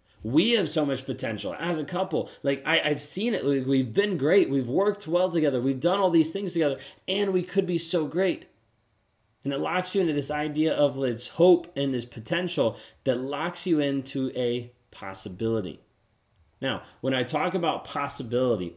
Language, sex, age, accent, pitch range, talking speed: English, male, 30-49, American, 115-150 Hz, 185 wpm